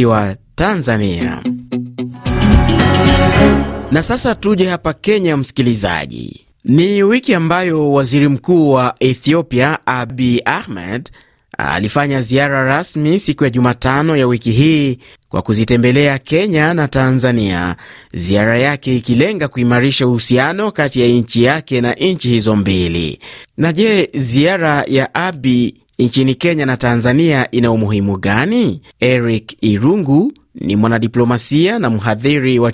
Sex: male